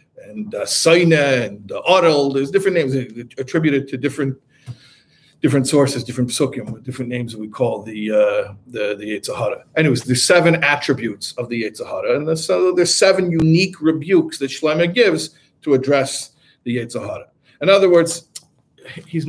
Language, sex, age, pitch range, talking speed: English, male, 50-69, 130-165 Hz, 155 wpm